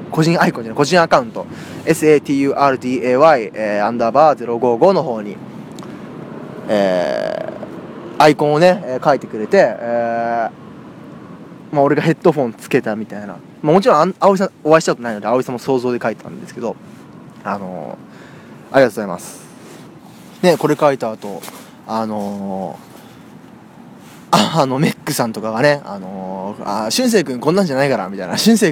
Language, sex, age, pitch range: Japanese, male, 20-39, 115-175 Hz